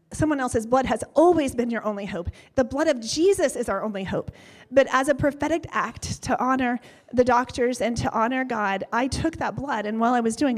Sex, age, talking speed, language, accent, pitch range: female, 30-49, 220 wpm, English, American, 220-280 Hz